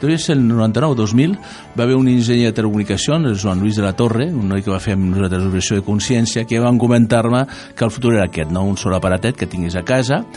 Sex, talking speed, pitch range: male, 220 wpm, 95-125 Hz